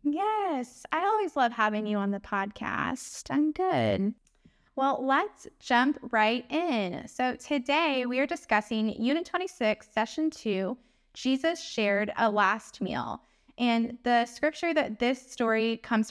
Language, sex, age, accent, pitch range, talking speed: English, female, 10-29, American, 210-280 Hz, 140 wpm